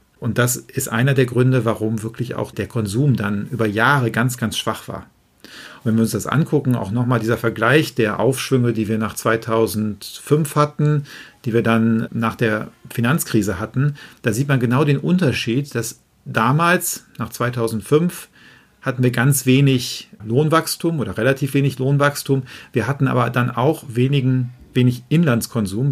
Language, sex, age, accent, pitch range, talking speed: German, male, 40-59, German, 115-140 Hz, 160 wpm